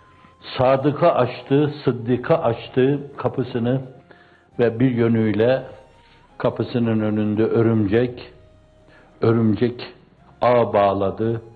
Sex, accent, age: male, native, 60-79